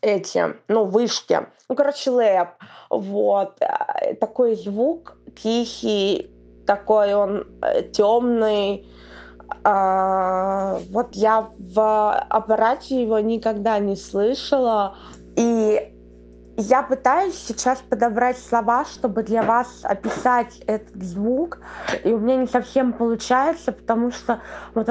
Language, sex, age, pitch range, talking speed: Russian, female, 20-39, 210-255 Hz, 100 wpm